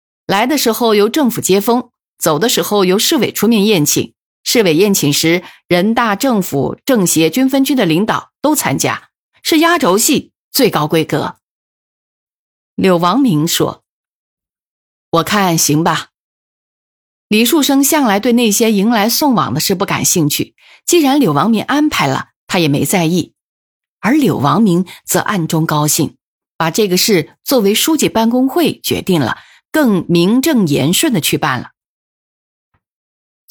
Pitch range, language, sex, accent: 165-245 Hz, Chinese, female, native